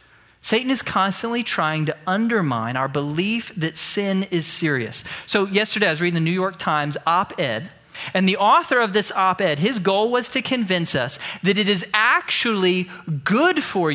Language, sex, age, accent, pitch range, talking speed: English, male, 40-59, American, 155-215 Hz, 170 wpm